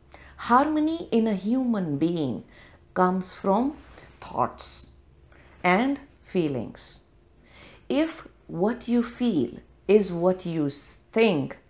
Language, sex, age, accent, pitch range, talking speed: English, female, 50-69, Indian, 165-215 Hz, 90 wpm